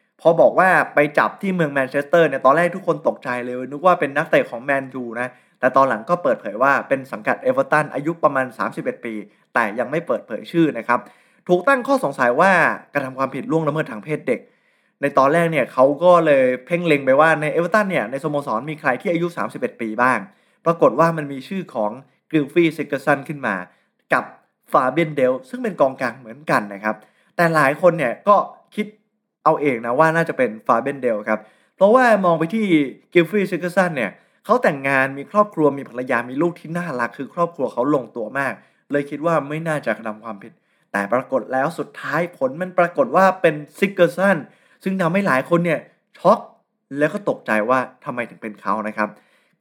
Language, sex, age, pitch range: Thai, male, 20-39, 130-170 Hz